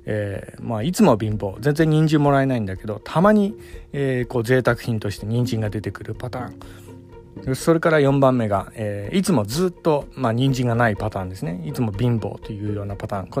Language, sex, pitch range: Japanese, male, 105-140 Hz